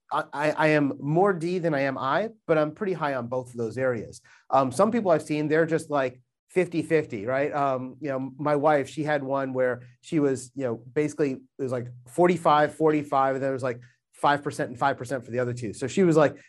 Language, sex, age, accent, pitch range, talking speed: English, male, 30-49, American, 130-155 Hz, 225 wpm